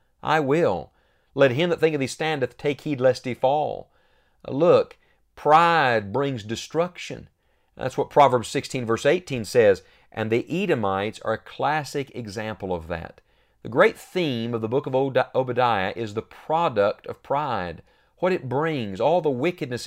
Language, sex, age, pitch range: English, male, 40-59, 110-140 Hz